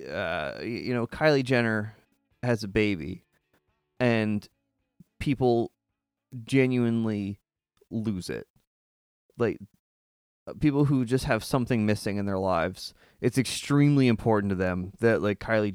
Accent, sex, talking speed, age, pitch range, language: American, male, 120 wpm, 20-39, 95-125 Hz, English